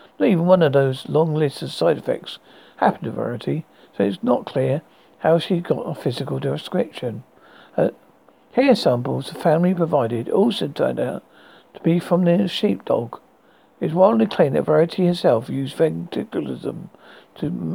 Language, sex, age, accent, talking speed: English, male, 60-79, British, 155 wpm